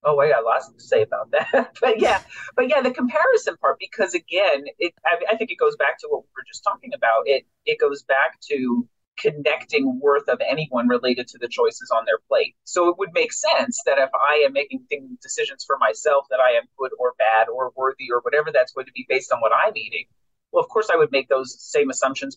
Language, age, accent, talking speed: English, 30-49, American, 235 wpm